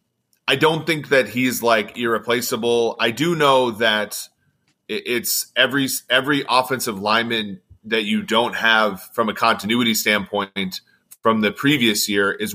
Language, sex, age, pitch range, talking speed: English, male, 30-49, 105-125 Hz, 140 wpm